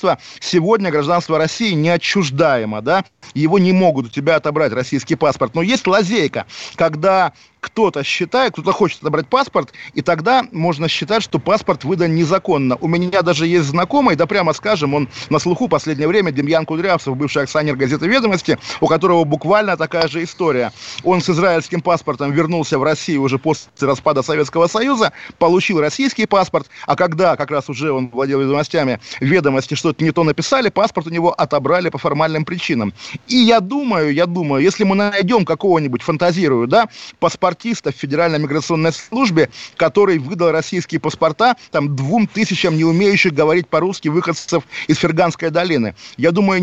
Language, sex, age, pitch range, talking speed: Russian, male, 30-49, 145-180 Hz, 160 wpm